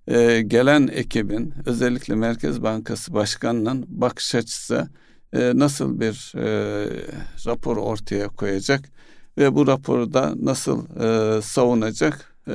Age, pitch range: 60-79, 110-135 Hz